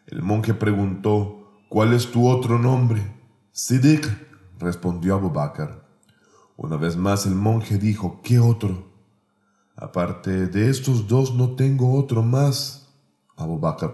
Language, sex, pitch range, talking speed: Spanish, male, 95-140 Hz, 130 wpm